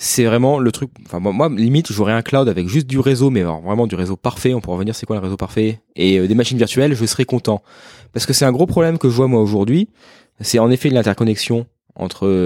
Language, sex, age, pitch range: French, male, 20-39, 105-135 Hz